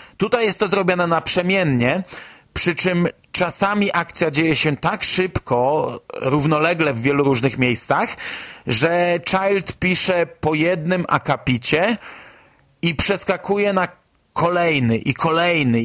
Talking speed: 115 wpm